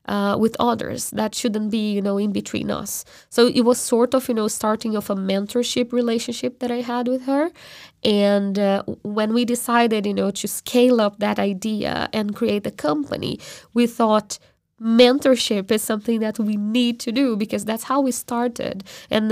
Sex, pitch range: female, 205-240 Hz